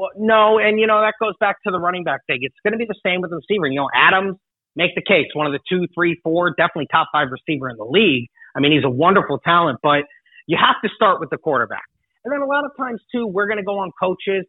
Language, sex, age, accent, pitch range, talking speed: English, male, 30-49, American, 150-195 Hz, 280 wpm